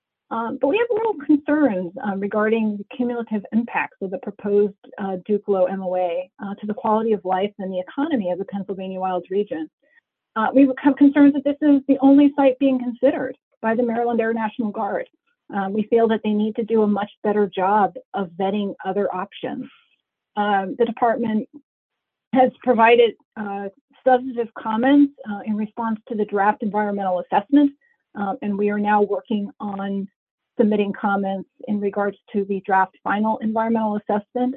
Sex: female